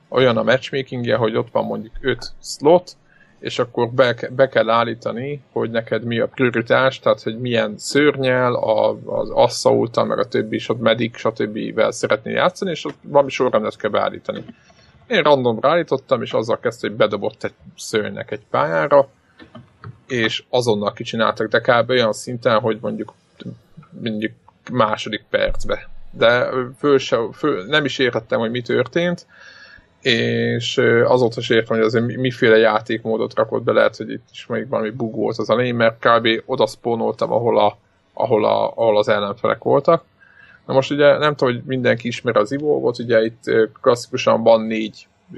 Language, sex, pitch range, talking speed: Hungarian, male, 110-135 Hz, 165 wpm